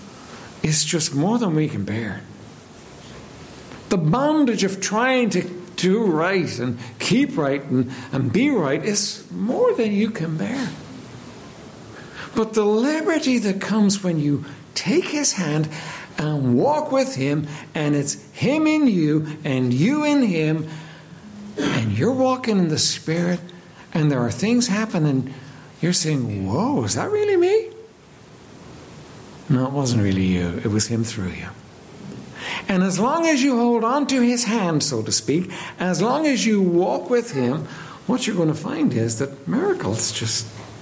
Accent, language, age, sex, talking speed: American, English, 60-79, male, 160 wpm